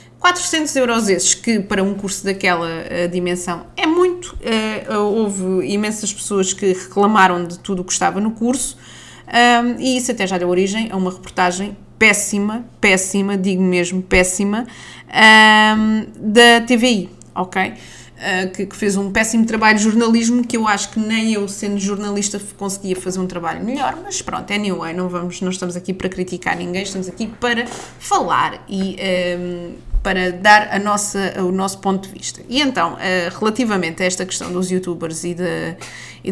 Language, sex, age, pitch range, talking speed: Portuguese, female, 20-39, 180-210 Hz, 170 wpm